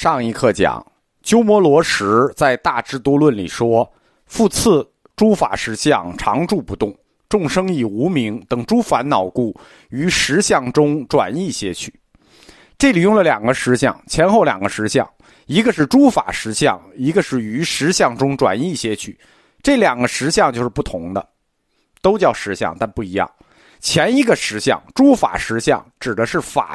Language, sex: Chinese, male